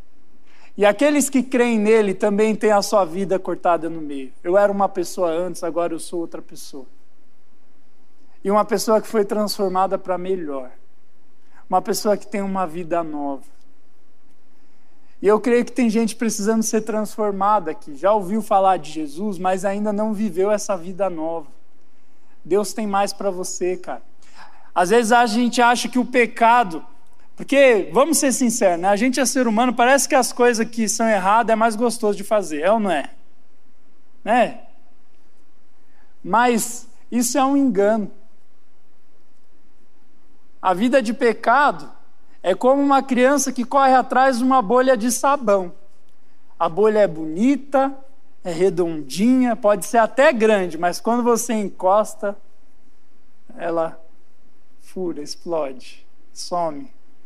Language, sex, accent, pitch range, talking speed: Portuguese, male, Brazilian, 195-260 Hz, 145 wpm